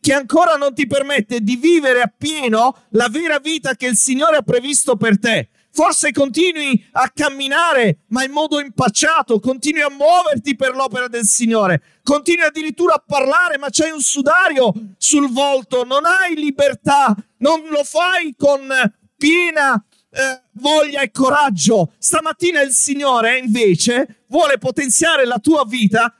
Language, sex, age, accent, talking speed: Italian, male, 40-59, native, 150 wpm